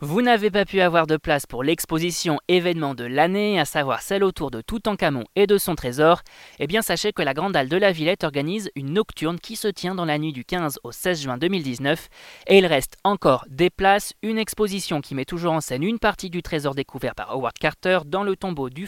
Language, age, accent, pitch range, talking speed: French, 20-39, French, 140-190 Hz, 230 wpm